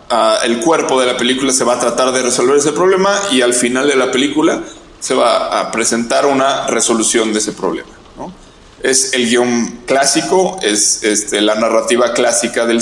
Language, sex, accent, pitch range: Spanish, male, Mexican, 120-165 Hz